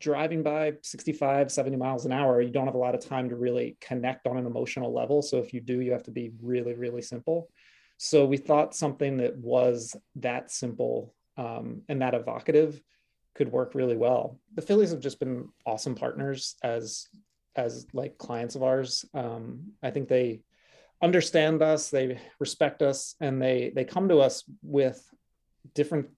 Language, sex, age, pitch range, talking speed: English, male, 30-49, 125-150 Hz, 180 wpm